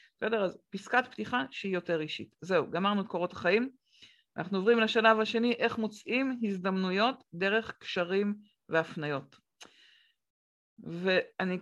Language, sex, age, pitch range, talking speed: Hebrew, female, 50-69, 170-220 Hz, 120 wpm